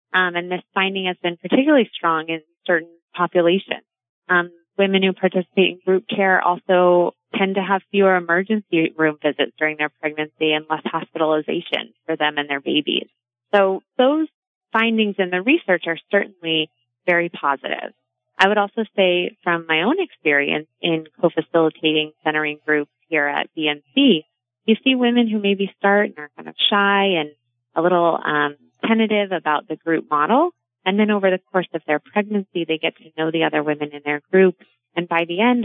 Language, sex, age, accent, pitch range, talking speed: English, female, 20-39, American, 155-195 Hz, 175 wpm